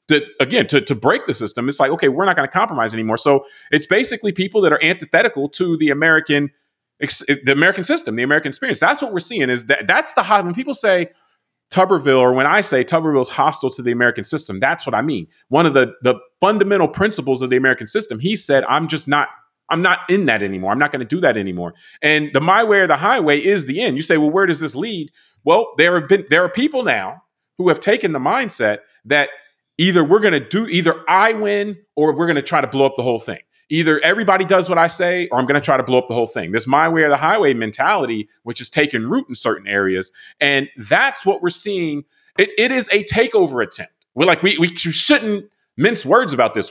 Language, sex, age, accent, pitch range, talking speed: English, male, 30-49, American, 130-185 Hz, 245 wpm